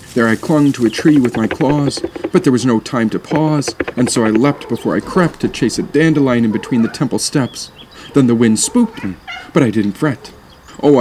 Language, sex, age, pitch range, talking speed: English, male, 40-59, 105-130 Hz, 230 wpm